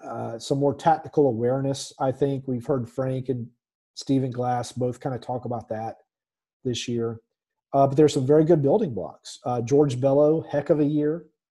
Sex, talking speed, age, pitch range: male, 190 wpm, 40-59, 120-150 Hz